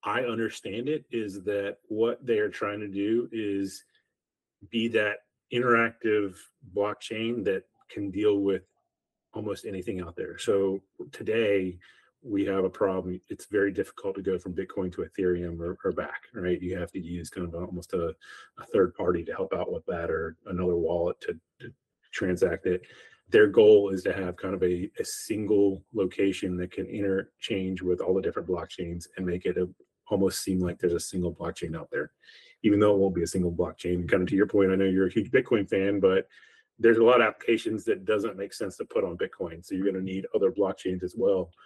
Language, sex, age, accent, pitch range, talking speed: English, male, 30-49, American, 90-120 Hz, 200 wpm